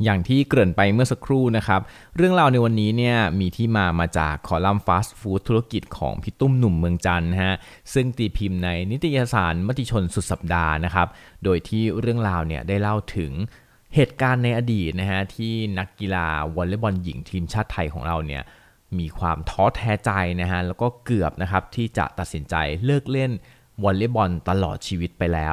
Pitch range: 85-115 Hz